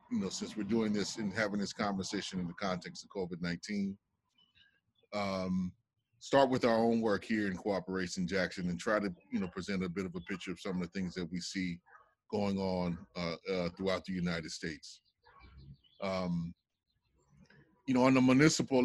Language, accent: English, American